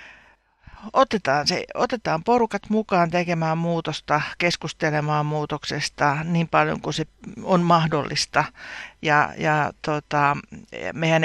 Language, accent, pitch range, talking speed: Finnish, native, 150-170 Hz, 100 wpm